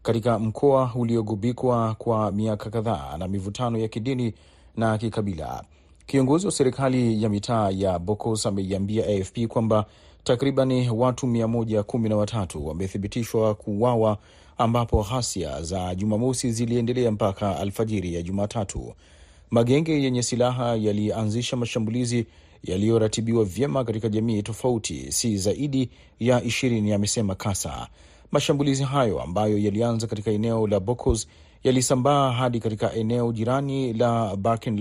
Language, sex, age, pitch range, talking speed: Swahili, male, 40-59, 100-125 Hz, 120 wpm